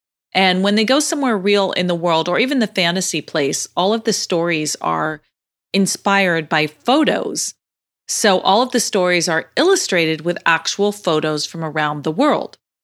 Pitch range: 165-210 Hz